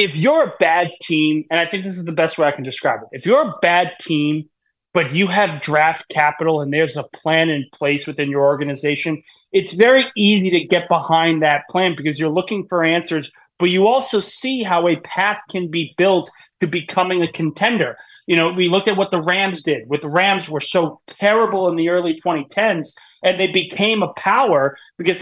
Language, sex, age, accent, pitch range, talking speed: English, male, 30-49, American, 155-190 Hz, 205 wpm